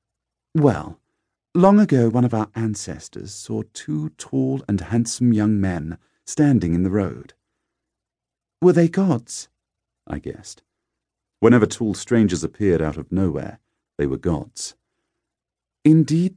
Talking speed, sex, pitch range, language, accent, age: 125 wpm, male, 95-125 Hz, English, British, 50-69